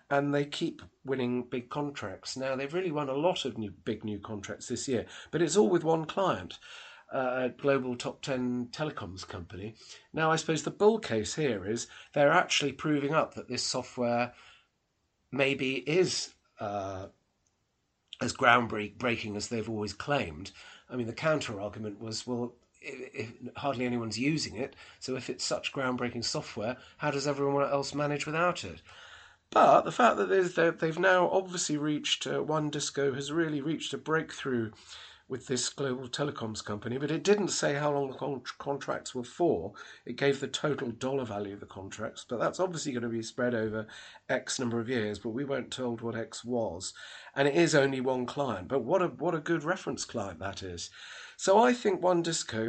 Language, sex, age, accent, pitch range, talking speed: English, male, 40-59, British, 120-155 Hz, 180 wpm